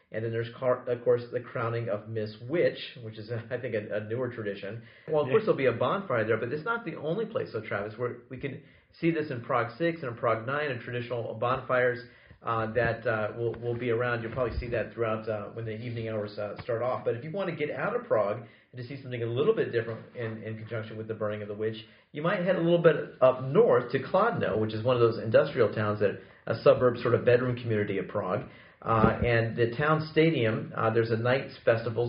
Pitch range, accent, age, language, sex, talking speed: 110-140 Hz, American, 40-59, English, male, 245 wpm